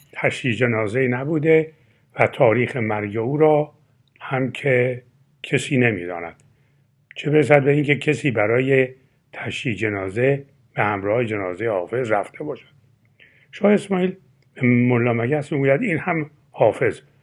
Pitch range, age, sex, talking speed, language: 115-140 Hz, 60-79, male, 120 wpm, Persian